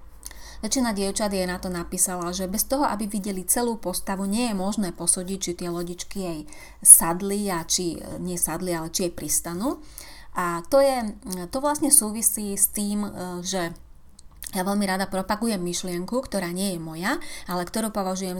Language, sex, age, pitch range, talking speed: Slovak, female, 30-49, 175-220 Hz, 165 wpm